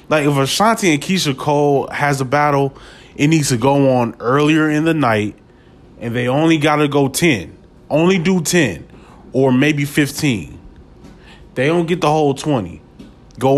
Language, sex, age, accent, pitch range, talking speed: English, male, 20-39, American, 120-155 Hz, 170 wpm